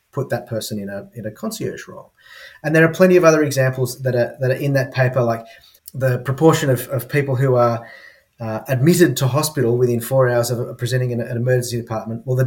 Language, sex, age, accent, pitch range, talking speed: English, male, 30-49, Australian, 120-145 Hz, 235 wpm